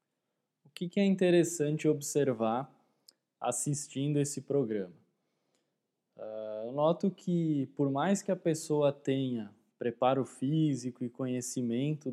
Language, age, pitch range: Portuguese, 20-39, 120-150 Hz